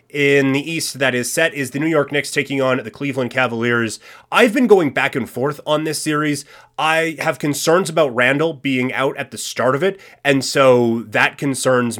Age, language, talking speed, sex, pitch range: 30-49, English, 205 wpm, male, 125-155 Hz